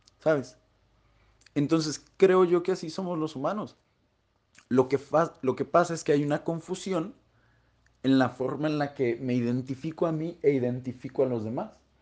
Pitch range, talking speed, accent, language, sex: 125-165 Hz, 175 wpm, Mexican, Spanish, male